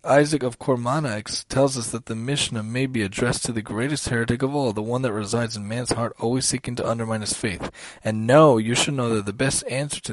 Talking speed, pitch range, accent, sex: 235 wpm, 115-135 Hz, American, male